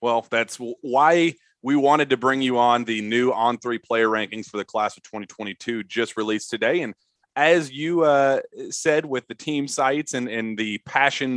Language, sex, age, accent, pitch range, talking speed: English, male, 30-49, American, 110-145 Hz, 190 wpm